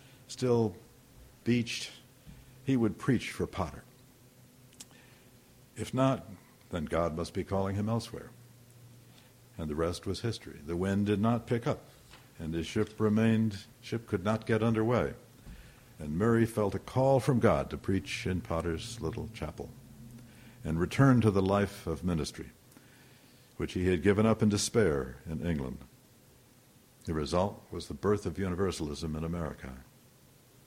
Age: 60-79